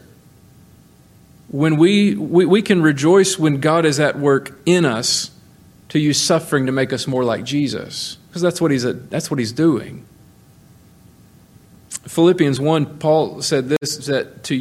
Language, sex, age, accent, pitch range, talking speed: English, male, 40-59, American, 120-160 Hz, 155 wpm